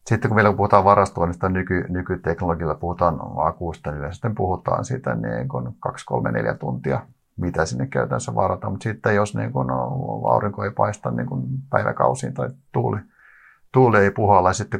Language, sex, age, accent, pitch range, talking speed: Finnish, male, 50-69, native, 90-120 Hz, 155 wpm